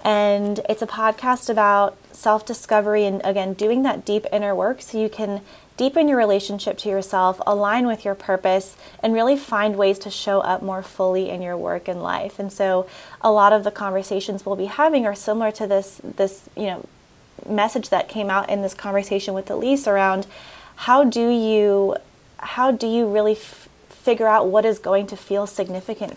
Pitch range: 195-220 Hz